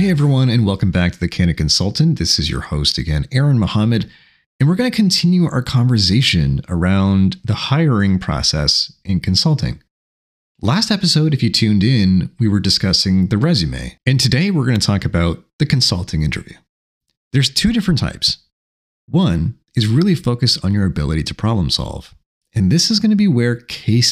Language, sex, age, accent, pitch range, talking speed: English, male, 30-49, American, 85-130 Hz, 180 wpm